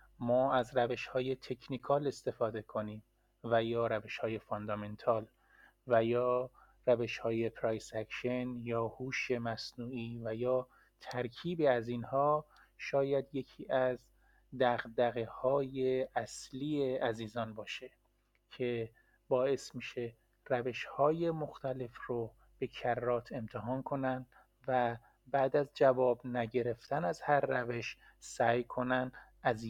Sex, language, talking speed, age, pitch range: male, Persian, 115 wpm, 30-49, 115-130 Hz